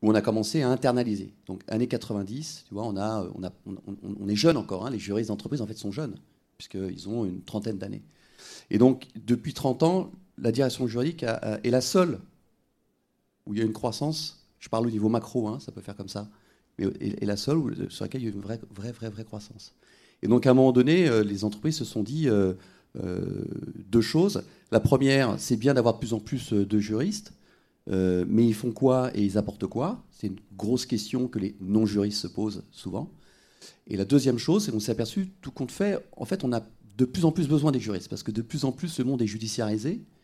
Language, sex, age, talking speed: French, male, 30-49, 235 wpm